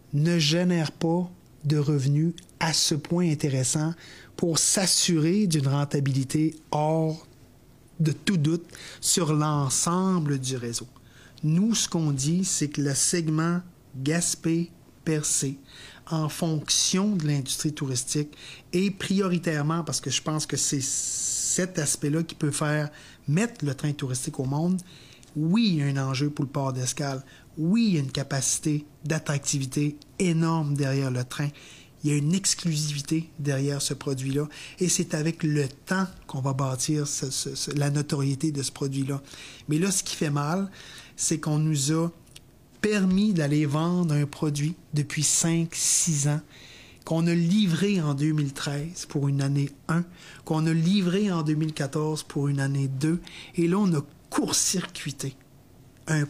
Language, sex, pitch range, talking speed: French, male, 140-165 Hz, 150 wpm